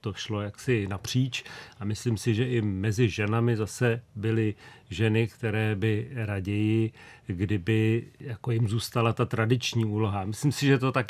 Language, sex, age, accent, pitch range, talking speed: Czech, male, 40-59, native, 110-125 Hz, 155 wpm